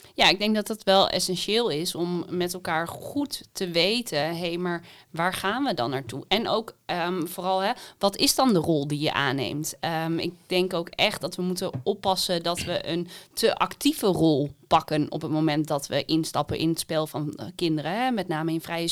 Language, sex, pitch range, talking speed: Dutch, female, 170-205 Hz, 215 wpm